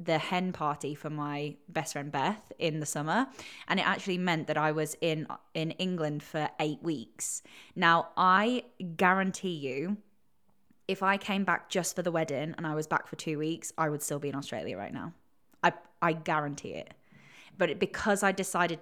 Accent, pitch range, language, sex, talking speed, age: British, 155-180 Hz, English, female, 190 wpm, 10-29